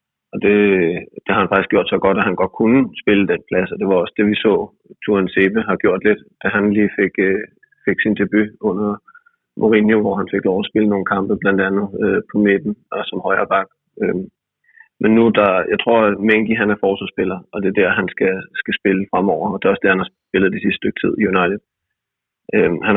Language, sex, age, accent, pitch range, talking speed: Danish, male, 30-49, native, 100-110 Hz, 240 wpm